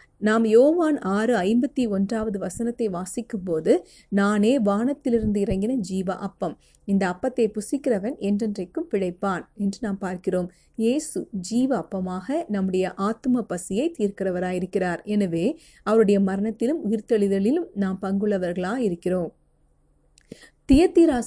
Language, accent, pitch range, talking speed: Tamil, native, 195-245 Hz, 95 wpm